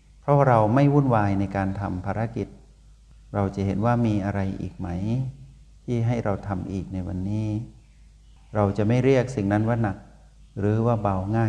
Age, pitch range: 60-79, 95-110 Hz